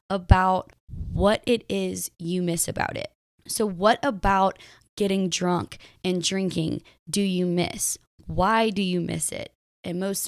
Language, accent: English, American